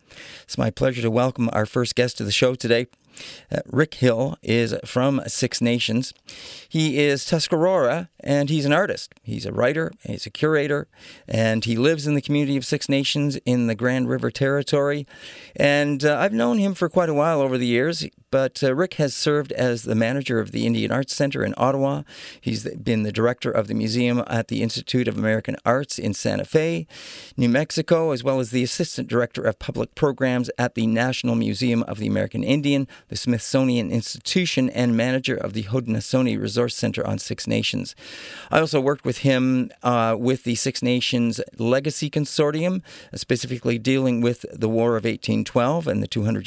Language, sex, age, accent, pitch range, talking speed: English, male, 40-59, American, 120-145 Hz, 185 wpm